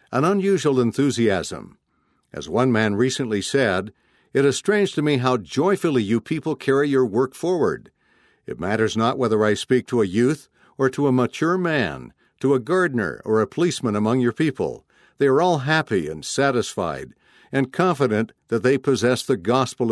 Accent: American